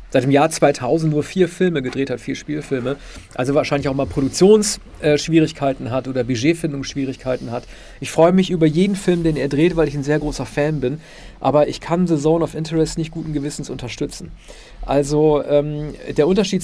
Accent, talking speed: German, 190 wpm